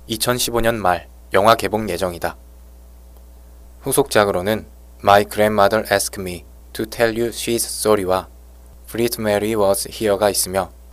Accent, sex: native, male